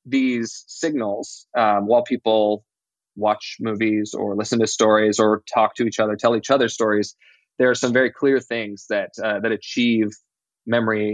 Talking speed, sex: 165 wpm, male